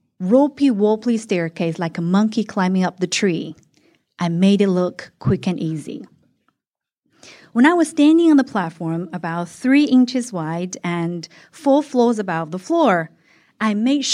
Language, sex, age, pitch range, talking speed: English, female, 30-49, 180-270 Hz, 150 wpm